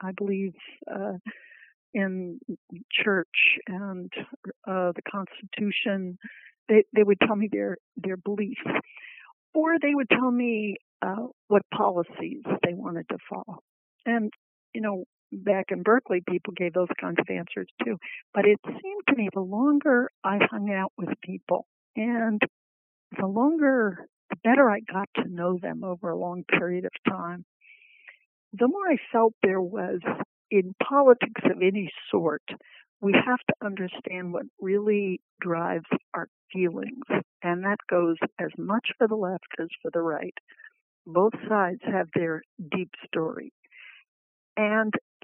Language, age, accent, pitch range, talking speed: English, 60-79, American, 190-250 Hz, 145 wpm